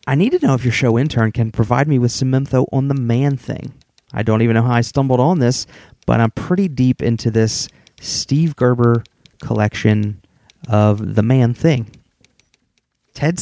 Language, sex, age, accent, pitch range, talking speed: English, male, 30-49, American, 110-140 Hz, 185 wpm